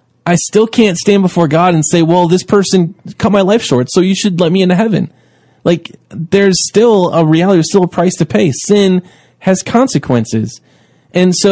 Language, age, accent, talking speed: English, 20-39, American, 200 wpm